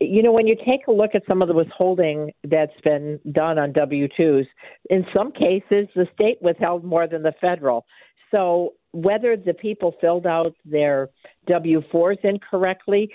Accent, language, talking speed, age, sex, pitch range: American, English, 165 wpm, 50-69, female, 150-190 Hz